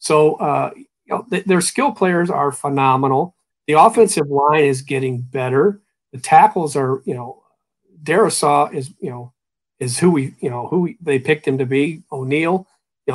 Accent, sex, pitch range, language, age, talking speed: American, male, 135-170 Hz, English, 50-69, 180 wpm